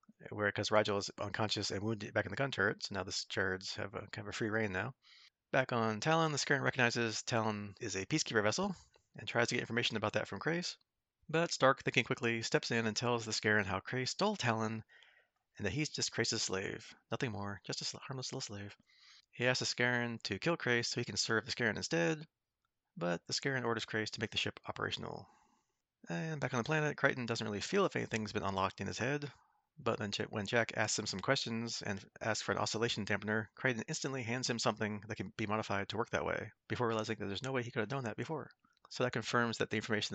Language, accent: English, American